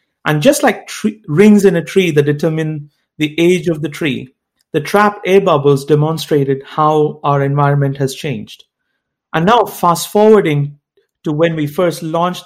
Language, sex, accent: English, male, Indian